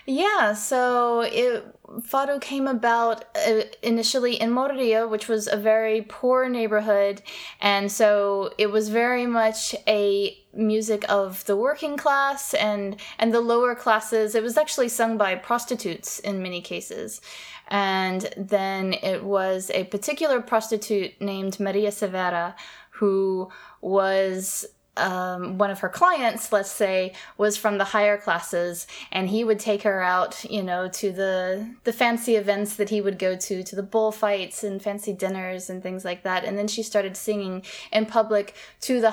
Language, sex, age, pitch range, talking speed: English, female, 20-39, 190-225 Hz, 160 wpm